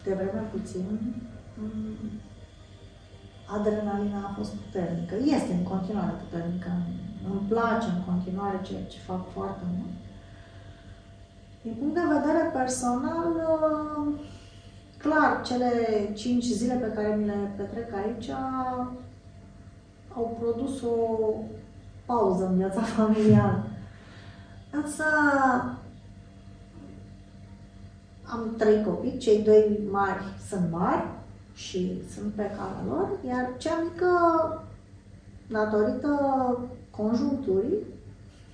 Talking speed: 95 wpm